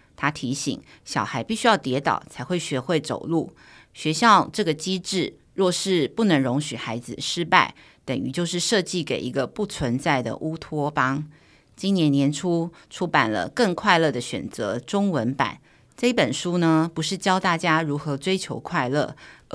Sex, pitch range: female, 140-185 Hz